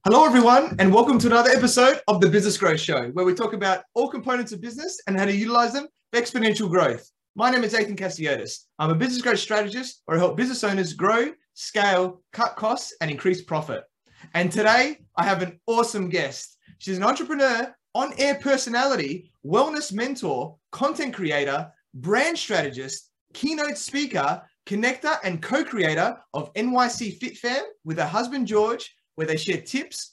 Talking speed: 165 wpm